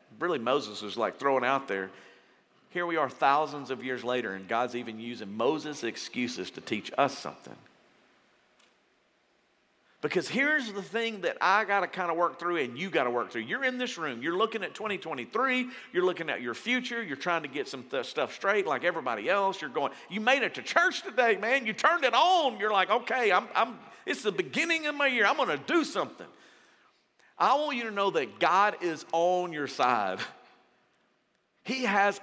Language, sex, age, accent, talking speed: English, male, 50-69, American, 200 wpm